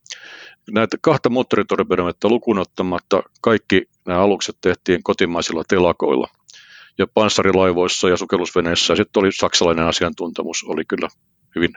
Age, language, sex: 50-69, Finnish, male